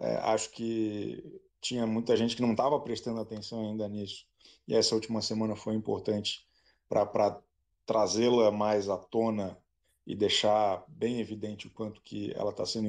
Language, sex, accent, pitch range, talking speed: Portuguese, male, Brazilian, 110-135 Hz, 160 wpm